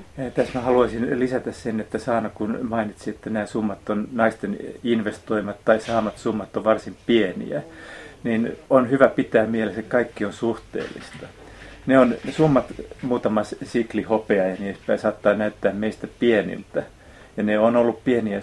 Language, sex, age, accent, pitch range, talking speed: Finnish, male, 30-49, native, 105-120 Hz, 160 wpm